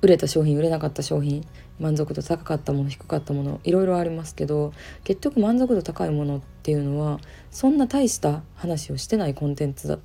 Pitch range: 145-185 Hz